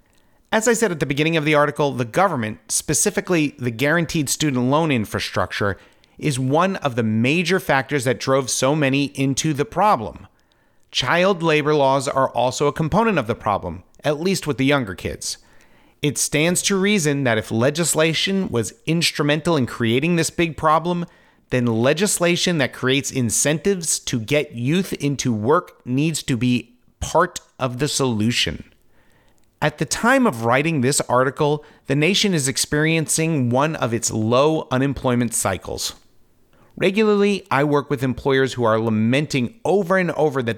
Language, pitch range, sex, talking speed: English, 120-160 Hz, male, 155 wpm